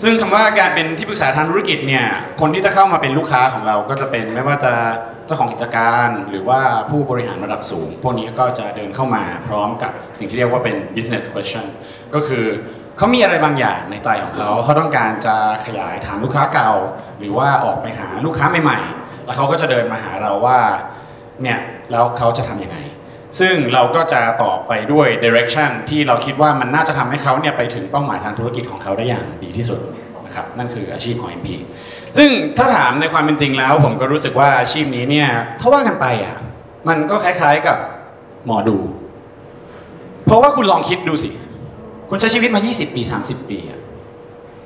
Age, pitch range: 20-39, 115-155 Hz